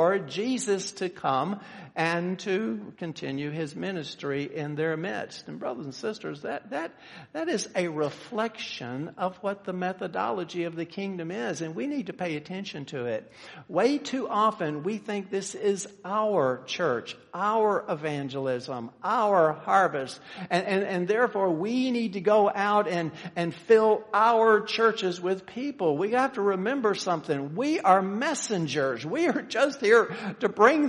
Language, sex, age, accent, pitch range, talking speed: English, male, 60-79, American, 150-215 Hz, 155 wpm